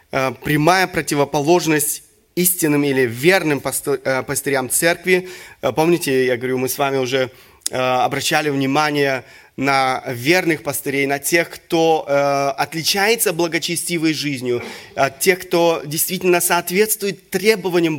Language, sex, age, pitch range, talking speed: Russian, male, 30-49, 130-175 Hz, 105 wpm